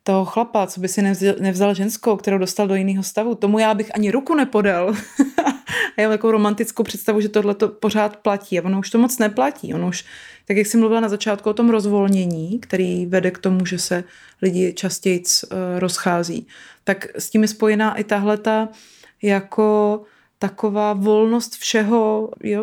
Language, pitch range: Czech, 190-215 Hz